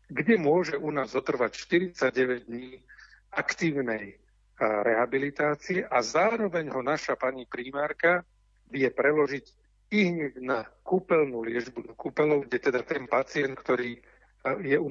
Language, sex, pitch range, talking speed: Slovak, male, 125-170 Hz, 120 wpm